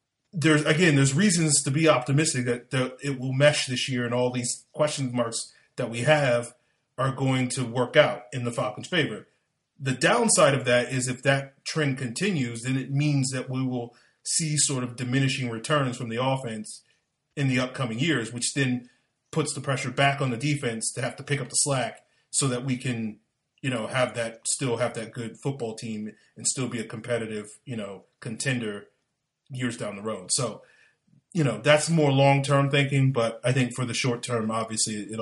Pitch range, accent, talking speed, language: 115-140 Hz, American, 200 wpm, English